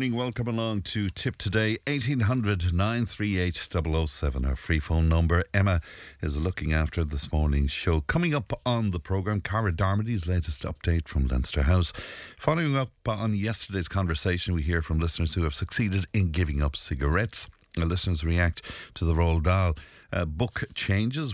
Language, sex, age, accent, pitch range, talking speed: English, male, 60-79, Irish, 80-105 Hz, 160 wpm